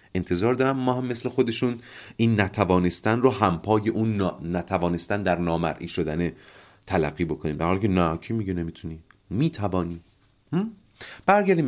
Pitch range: 90-150 Hz